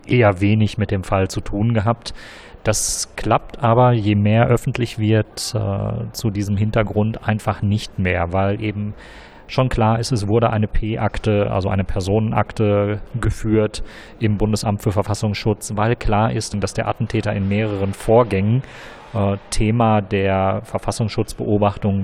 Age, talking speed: 40-59, 140 wpm